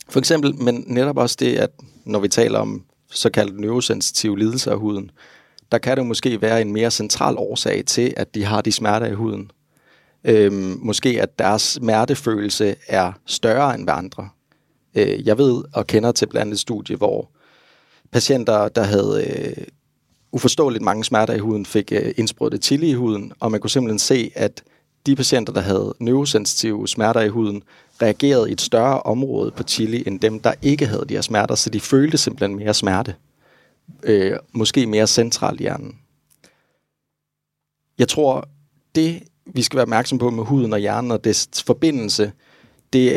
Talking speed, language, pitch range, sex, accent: 175 wpm, Danish, 105-130 Hz, male, native